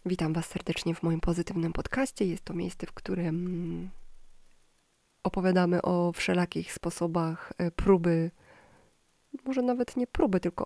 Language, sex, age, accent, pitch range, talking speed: Polish, female, 20-39, native, 175-195 Hz, 125 wpm